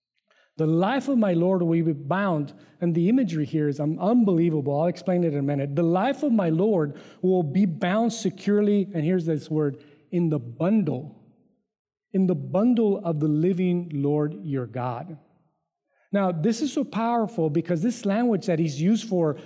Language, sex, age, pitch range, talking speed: English, male, 30-49, 155-205 Hz, 175 wpm